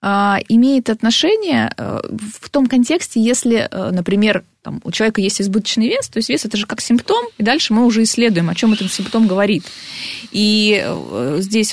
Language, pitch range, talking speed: Russian, 185-235 Hz, 170 wpm